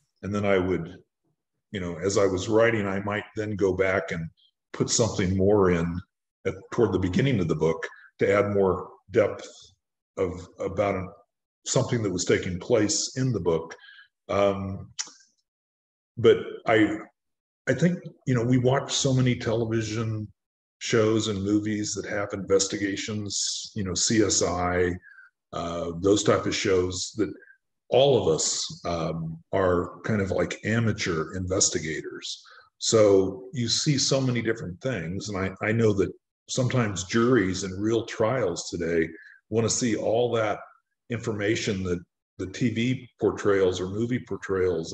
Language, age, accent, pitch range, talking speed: English, 40-59, American, 95-120 Hz, 145 wpm